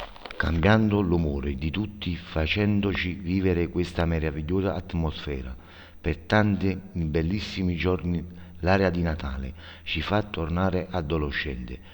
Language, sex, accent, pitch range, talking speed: Italian, male, native, 80-95 Hz, 100 wpm